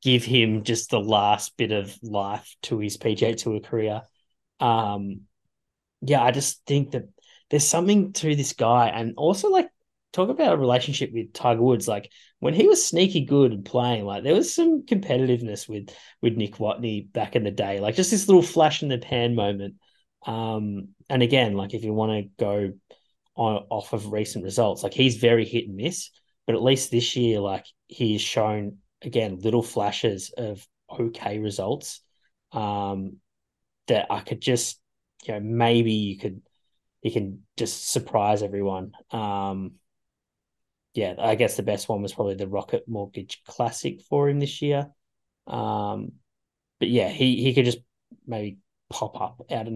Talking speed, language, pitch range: 170 wpm, English, 105-130 Hz